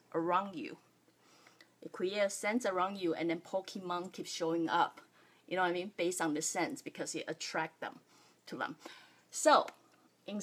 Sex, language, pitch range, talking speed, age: female, English, 170-225 Hz, 180 wpm, 30-49